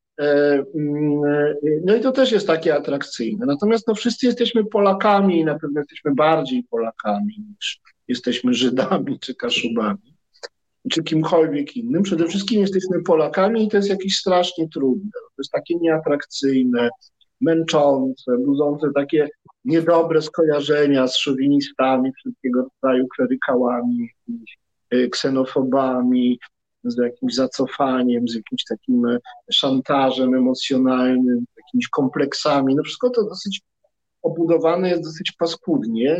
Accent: native